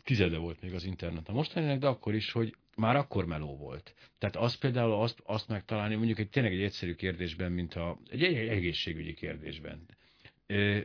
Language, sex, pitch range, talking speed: Hungarian, male, 85-115 Hz, 190 wpm